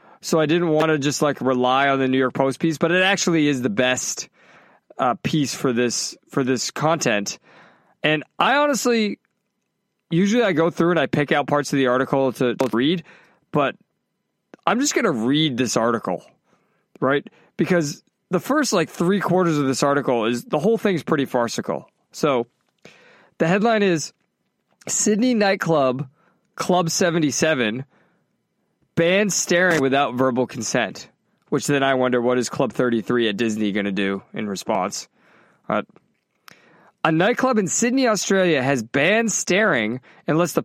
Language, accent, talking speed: English, American, 160 wpm